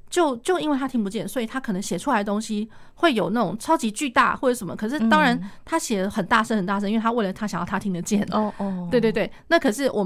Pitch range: 200-250 Hz